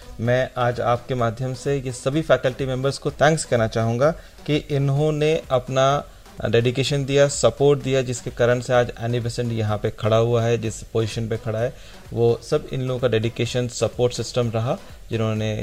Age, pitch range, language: 40-59, 115-140 Hz, Hindi